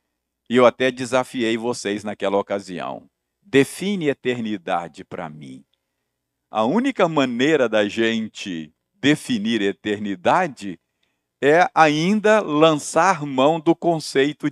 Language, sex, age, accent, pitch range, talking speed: Portuguese, male, 50-69, Brazilian, 100-165 Hz, 100 wpm